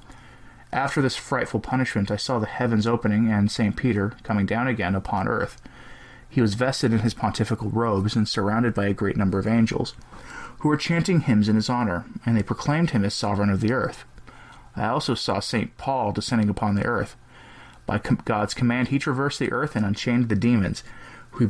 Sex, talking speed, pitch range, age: male, 195 wpm, 105-125 Hz, 30-49